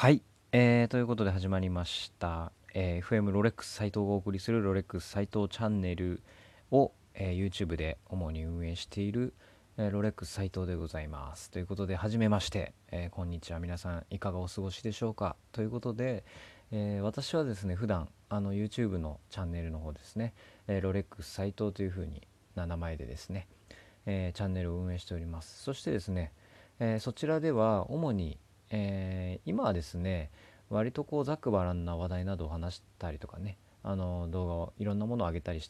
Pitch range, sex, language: 85-105 Hz, male, Japanese